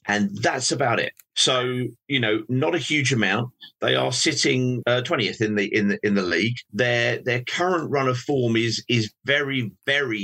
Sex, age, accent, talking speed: male, 40-59, British, 195 wpm